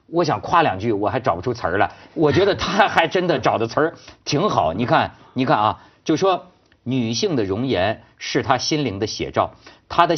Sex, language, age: male, Chinese, 50-69